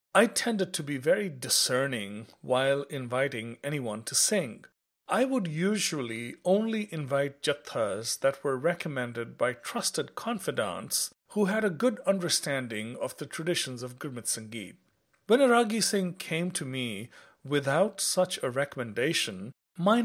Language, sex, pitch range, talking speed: English, male, 125-190 Hz, 140 wpm